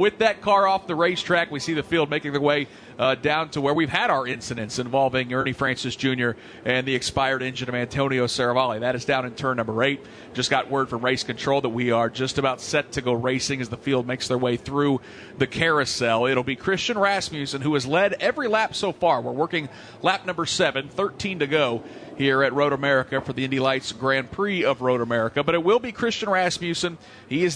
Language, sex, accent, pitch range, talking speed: English, male, American, 130-170 Hz, 225 wpm